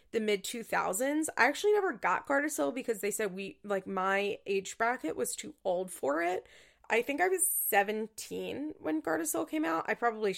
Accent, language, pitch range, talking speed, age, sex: American, English, 195-265 Hz, 180 wpm, 20-39, female